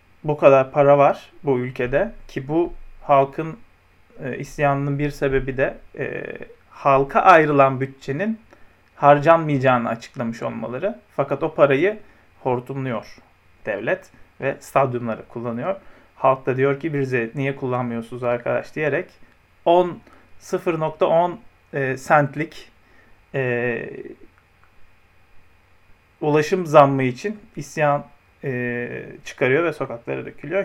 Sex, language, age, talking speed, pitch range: male, Turkish, 40-59, 100 wpm, 125-150 Hz